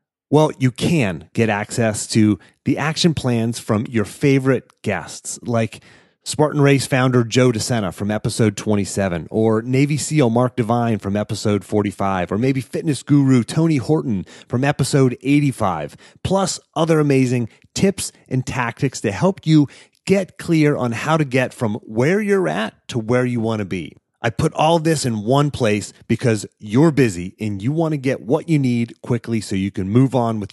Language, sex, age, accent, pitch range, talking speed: English, male, 30-49, American, 110-145 Hz, 175 wpm